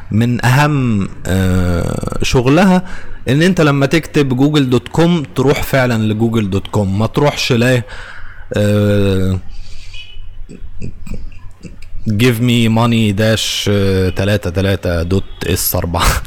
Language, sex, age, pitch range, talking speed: Arabic, male, 20-39, 95-140 Hz, 75 wpm